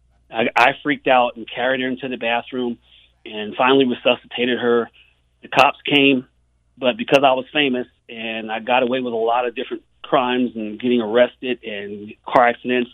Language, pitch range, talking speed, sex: English, 115-145 Hz, 170 wpm, male